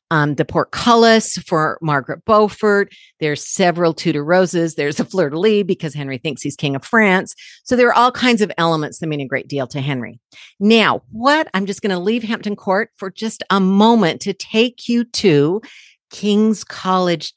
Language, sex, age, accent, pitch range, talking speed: English, female, 50-69, American, 175-230 Hz, 185 wpm